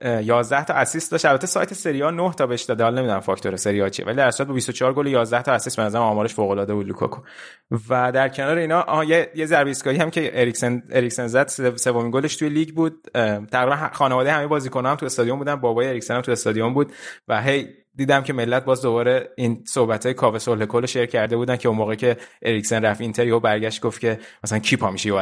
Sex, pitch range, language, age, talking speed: male, 105-135 Hz, Persian, 20-39, 205 wpm